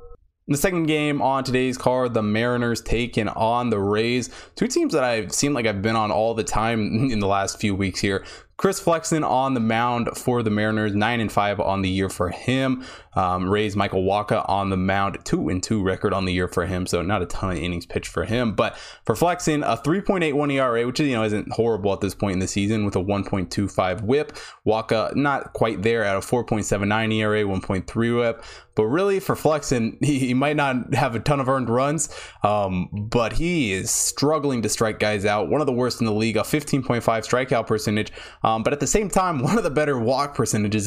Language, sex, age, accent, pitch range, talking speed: English, male, 20-39, American, 100-125 Hz, 240 wpm